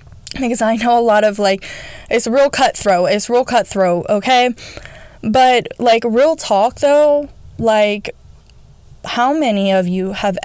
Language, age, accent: English, 10-29, American